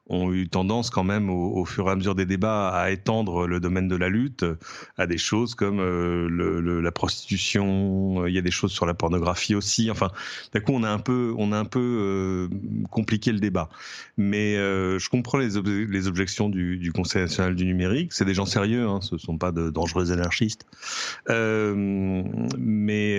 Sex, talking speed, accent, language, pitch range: male, 205 wpm, French, French, 95-115 Hz